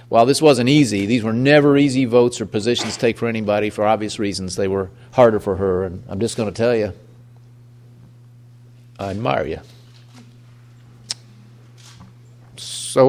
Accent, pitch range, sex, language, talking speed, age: American, 110-125 Hz, male, English, 150 wpm, 50-69